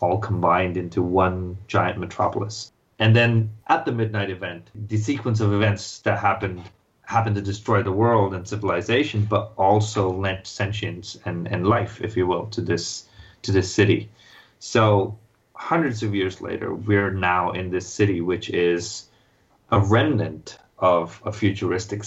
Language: English